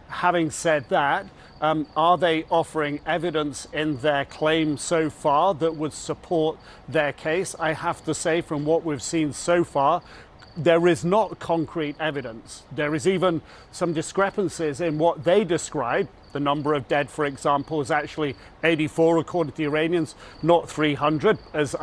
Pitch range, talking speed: 150-175 Hz, 160 wpm